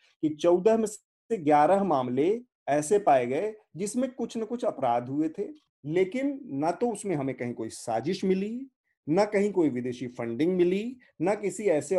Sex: male